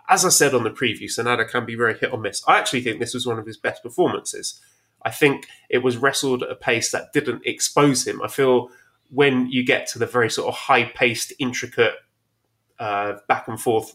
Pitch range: 120-155 Hz